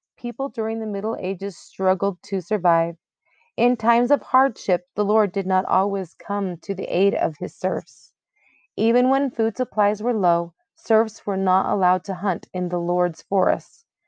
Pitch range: 185-235 Hz